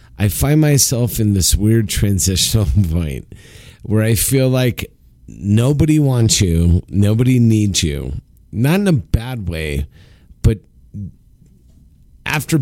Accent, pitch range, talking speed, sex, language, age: American, 85-120 Hz, 120 wpm, male, English, 40-59